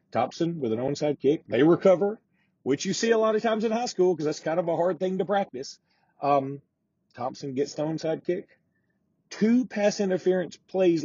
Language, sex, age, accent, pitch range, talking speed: English, male, 40-59, American, 130-175 Hz, 195 wpm